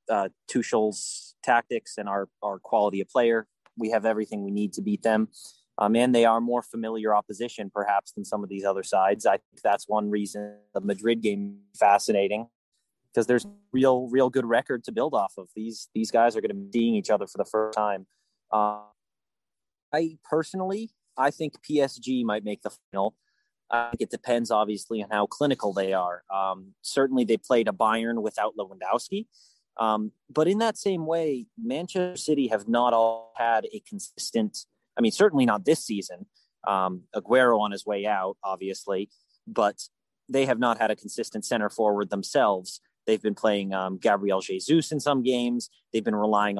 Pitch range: 105-145 Hz